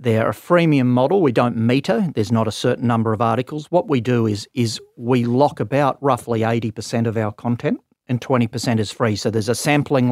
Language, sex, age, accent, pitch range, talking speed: English, male, 40-59, Australian, 115-140 Hz, 220 wpm